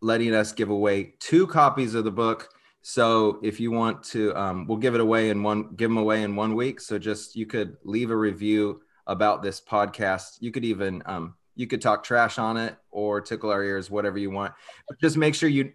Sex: male